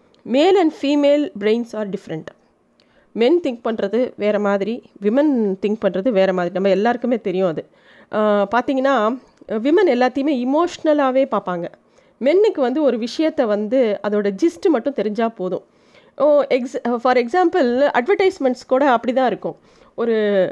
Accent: native